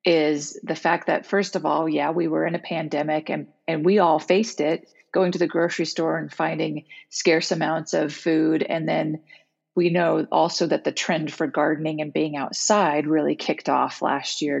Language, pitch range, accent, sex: English, 150-175 Hz, American, female